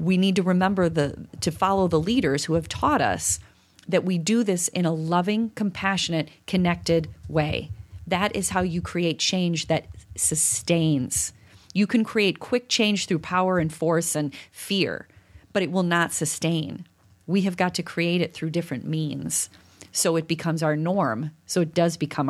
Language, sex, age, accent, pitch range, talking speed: English, female, 30-49, American, 155-180 Hz, 175 wpm